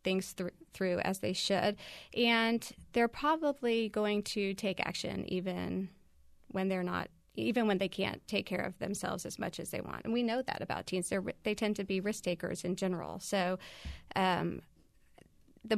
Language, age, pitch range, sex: English, 30-49, 180-220 Hz, female